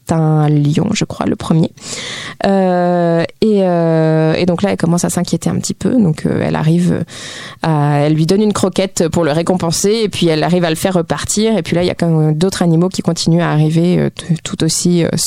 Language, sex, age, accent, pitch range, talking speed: French, female, 20-39, French, 160-195 Hz, 225 wpm